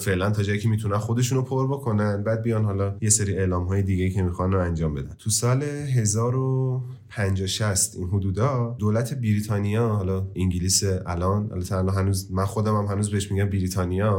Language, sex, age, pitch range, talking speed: Persian, male, 30-49, 95-115 Hz, 155 wpm